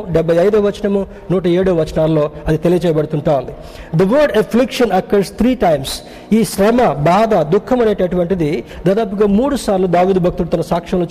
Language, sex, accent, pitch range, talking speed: Telugu, male, native, 170-220 Hz, 70 wpm